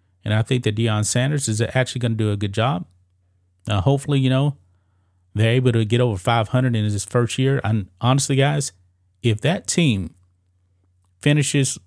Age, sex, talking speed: 30-49, male, 175 wpm